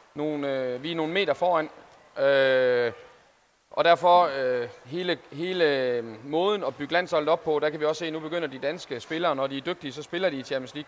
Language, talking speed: Danish, 225 wpm